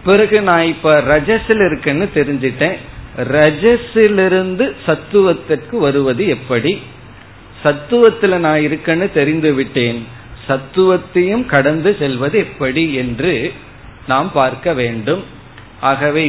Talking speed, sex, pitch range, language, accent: 70 wpm, male, 125-170 Hz, Tamil, native